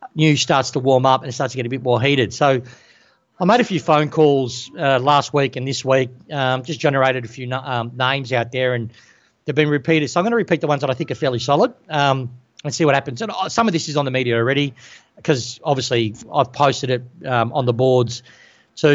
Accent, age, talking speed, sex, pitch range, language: Australian, 40-59, 245 wpm, male, 125-150 Hz, English